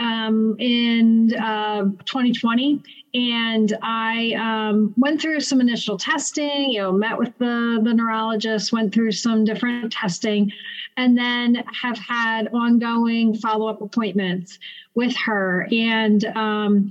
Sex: female